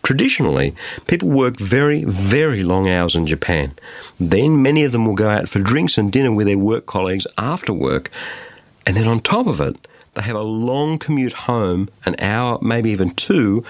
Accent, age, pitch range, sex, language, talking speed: Australian, 50-69, 95-135 Hz, male, English, 190 wpm